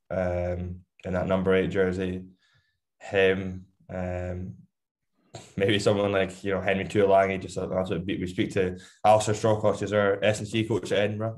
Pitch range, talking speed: 90-100 Hz, 150 wpm